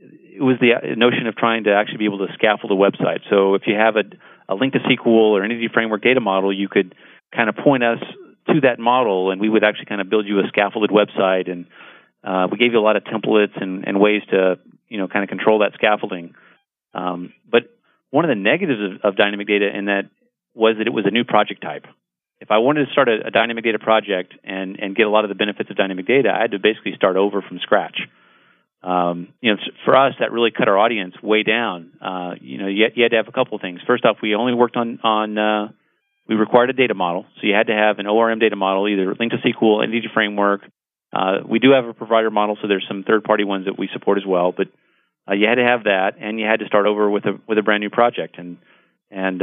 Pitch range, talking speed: 95-115 Hz, 255 wpm